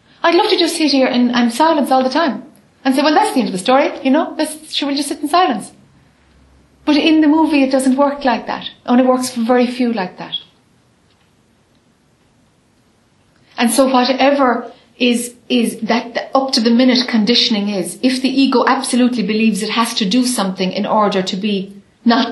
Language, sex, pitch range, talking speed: English, female, 230-270 Hz, 195 wpm